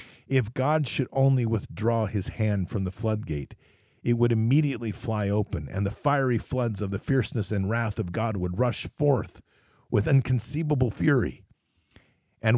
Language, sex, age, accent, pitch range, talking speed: English, male, 50-69, American, 95-120 Hz, 155 wpm